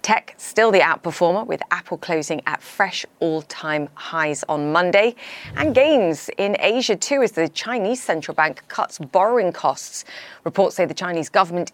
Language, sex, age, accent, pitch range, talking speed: English, female, 30-49, British, 155-205 Hz, 165 wpm